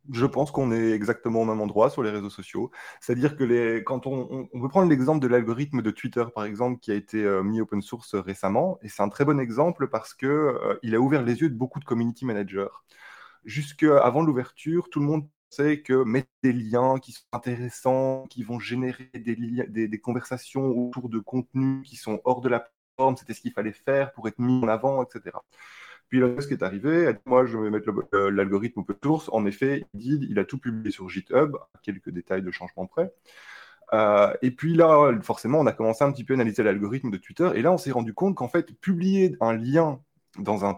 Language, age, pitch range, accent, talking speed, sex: French, 20-39, 115-150 Hz, French, 230 wpm, male